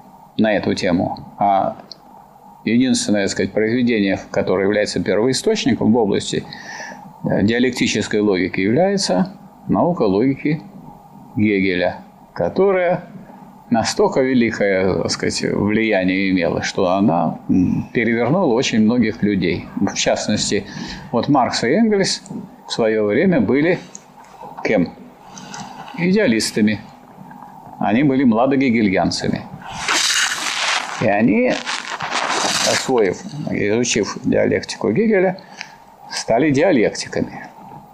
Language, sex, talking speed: Russian, male, 85 wpm